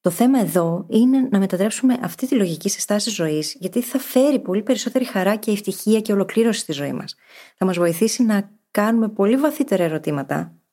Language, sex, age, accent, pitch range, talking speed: Greek, female, 20-39, native, 175-235 Hz, 185 wpm